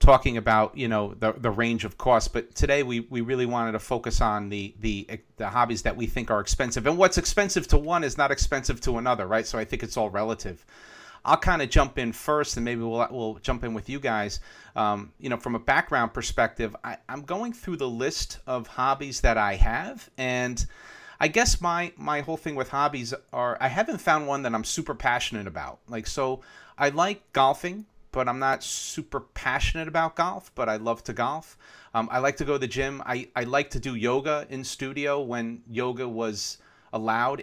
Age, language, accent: 40-59, English, American